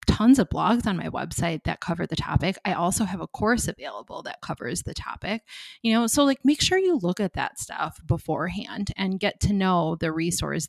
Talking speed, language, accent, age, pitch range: 215 wpm, English, American, 30-49, 175-225 Hz